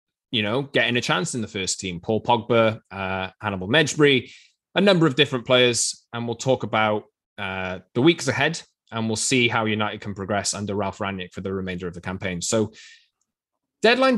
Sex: male